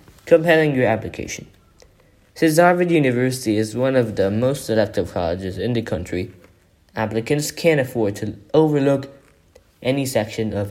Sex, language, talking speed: male, English, 135 wpm